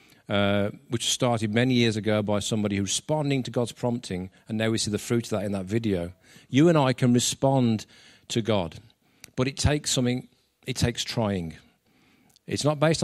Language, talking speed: English, 190 wpm